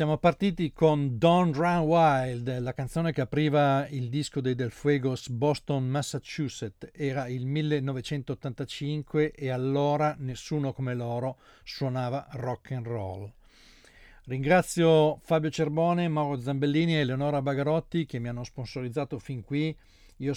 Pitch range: 120-150 Hz